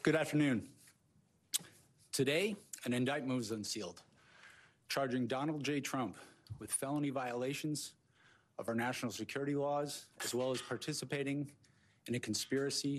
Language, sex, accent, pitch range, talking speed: English, male, American, 115-140 Hz, 120 wpm